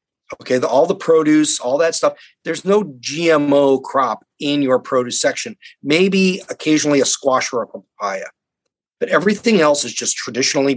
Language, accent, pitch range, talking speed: English, American, 125-170 Hz, 155 wpm